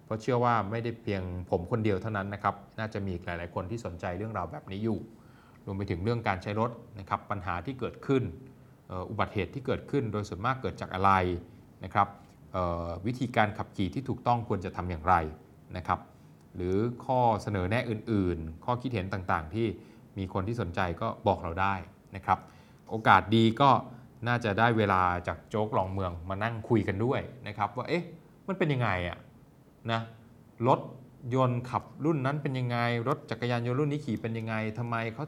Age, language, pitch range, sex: 20-39, Thai, 95-120 Hz, male